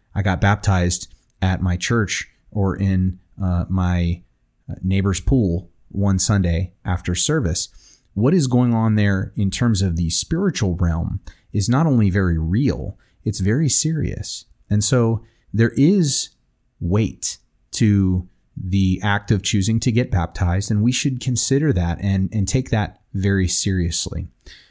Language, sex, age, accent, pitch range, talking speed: English, male, 30-49, American, 90-115 Hz, 145 wpm